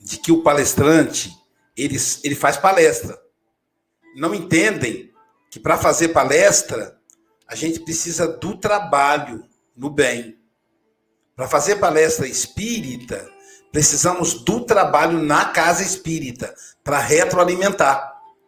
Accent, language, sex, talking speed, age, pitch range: Brazilian, Portuguese, male, 105 wpm, 60-79, 145-205 Hz